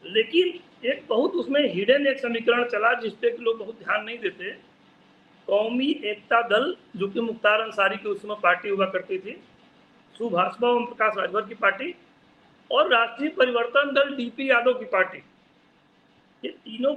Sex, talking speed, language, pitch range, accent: male, 155 wpm, Hindi, 220-275 Hz, native